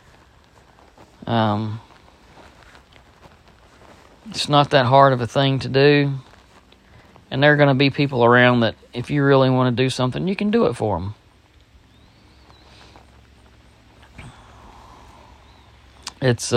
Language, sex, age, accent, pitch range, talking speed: English, male, 40-59, American, 95-135 Hz, 115 wpm